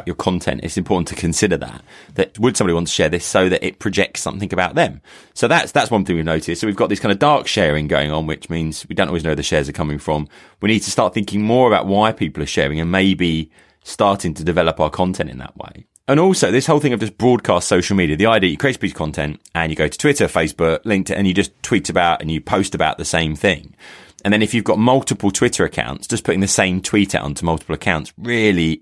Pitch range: 80-100 Hz